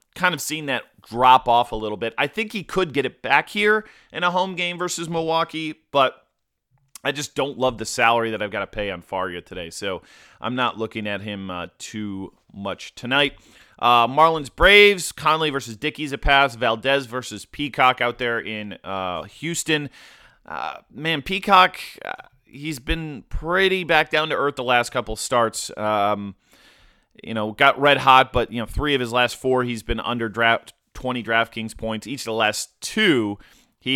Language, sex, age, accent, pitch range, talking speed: English, male, 30-49, American, 115-155 Hz, 185 wpm